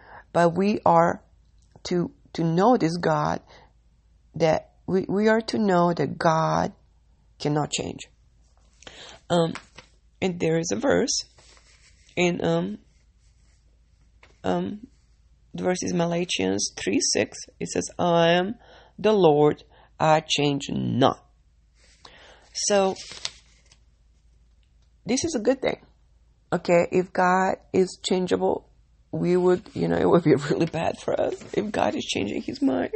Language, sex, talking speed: English, female, 125 wpm